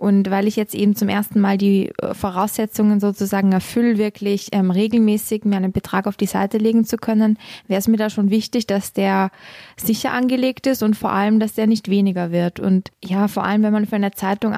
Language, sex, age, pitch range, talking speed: German, female, 20-39, 195-220 Hz, 215 wpm